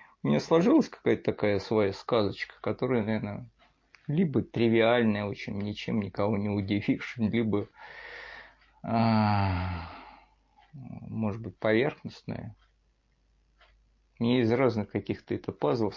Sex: male